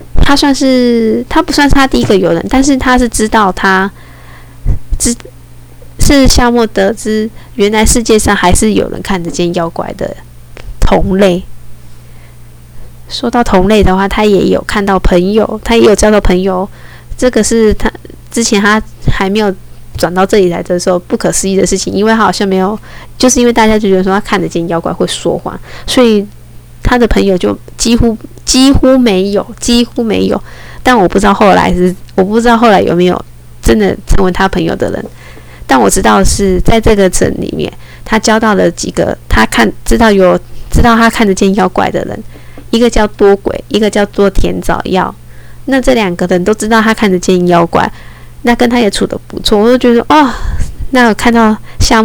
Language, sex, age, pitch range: Chinese, female, 10-29, 180-230 Hz